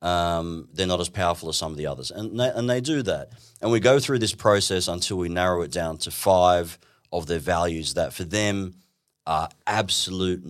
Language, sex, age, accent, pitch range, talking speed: English, male, 30-49, Australian, 80-95 Hz, 205 wpm